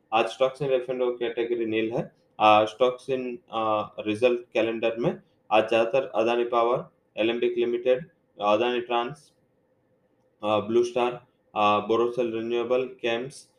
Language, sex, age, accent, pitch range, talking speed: English, male, 20-39, Indian, 115-125 Hz, 125 wpm